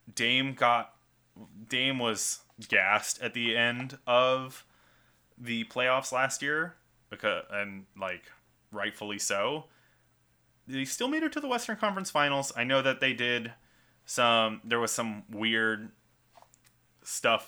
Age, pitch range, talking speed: 20-39, 100-125 Hz, 130 wpm